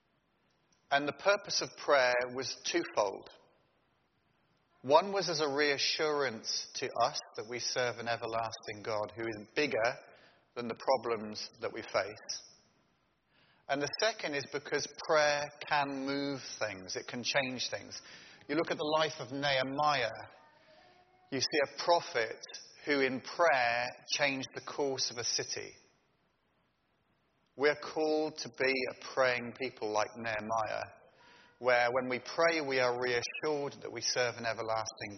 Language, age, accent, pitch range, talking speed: English, 30-49, British, 120-150 Hz, 140 wpm